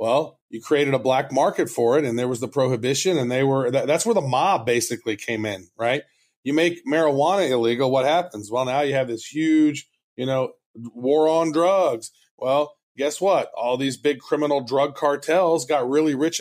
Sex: male